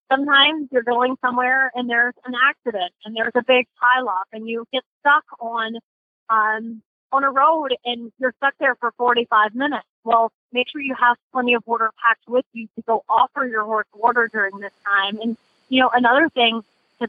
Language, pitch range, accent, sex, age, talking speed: English, 220-255 Hz, American, female, 30-49, 195 wpm